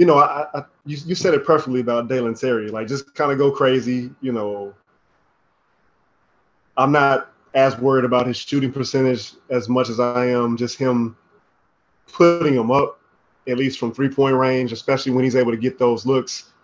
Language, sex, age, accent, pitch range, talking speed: English, male, 20-39, American, 125-145 Hz, 185 wpm